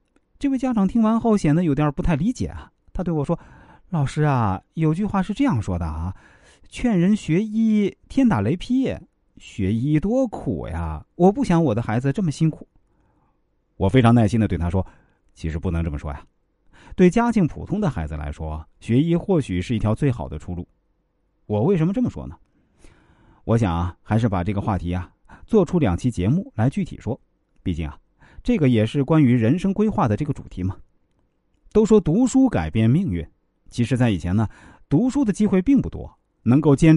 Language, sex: Chinese, male